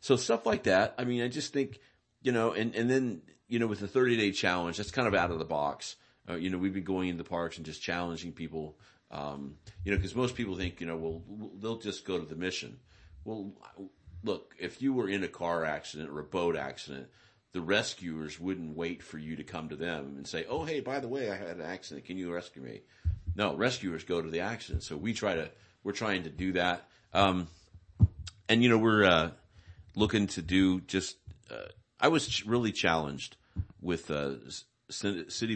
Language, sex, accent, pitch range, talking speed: English, male, American, 80-100 Hz, 215 wpm